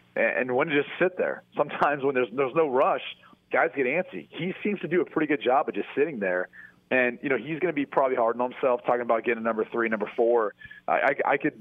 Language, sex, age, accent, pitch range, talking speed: English, male, 30-49, American, 110-135 Hz, 255 wpm